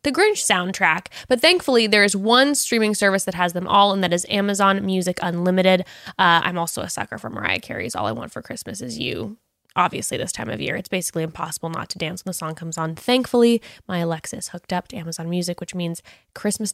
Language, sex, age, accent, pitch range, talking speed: English, female, 10-29, American, 180-210 Hz, 225 wpm